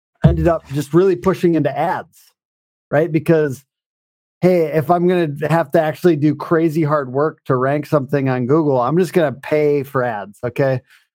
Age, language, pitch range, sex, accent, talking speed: 40-59, English, 145-175 Hz, male, American, 185 wpm